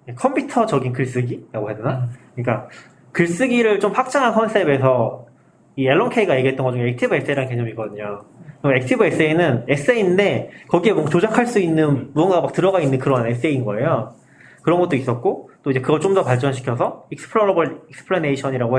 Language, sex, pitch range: Korean, male, 130-180 Hz